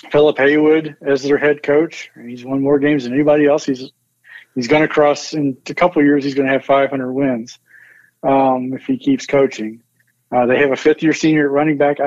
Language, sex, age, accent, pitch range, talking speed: English, male, 40-59, American, 125-150 Hz, 200 wpm